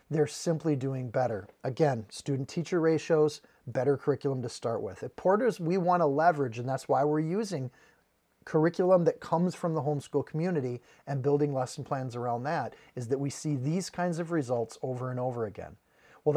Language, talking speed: English, 175 wpm